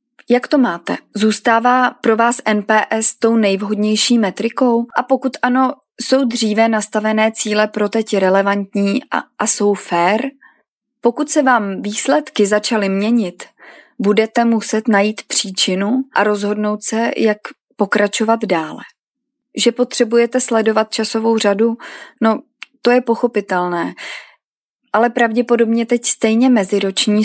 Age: 30-49